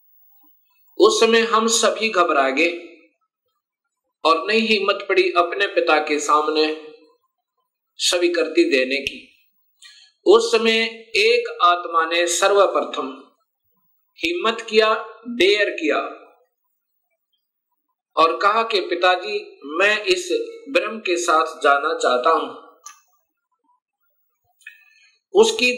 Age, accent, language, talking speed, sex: 50-69, native, Hindi, 95 wpm, male